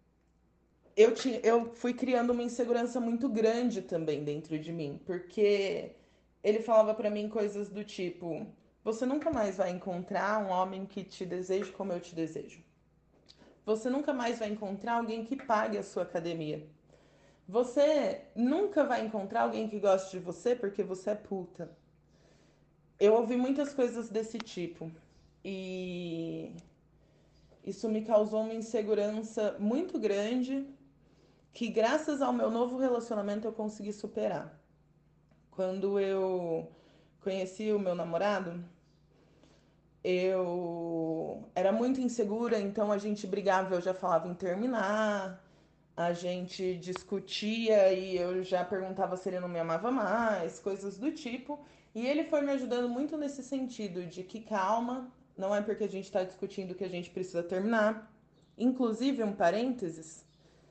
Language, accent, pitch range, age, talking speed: Portuguese, Brazilian, 180-230 Hz, 20-39, 140 wpm